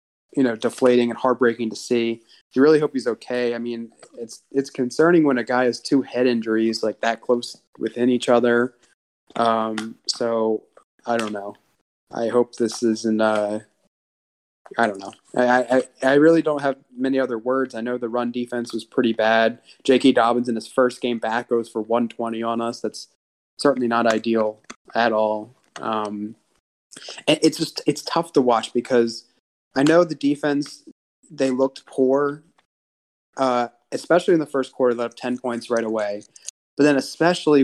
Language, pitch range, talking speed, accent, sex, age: English, 115-135 Hz, 170 wpm, American, male, 20-39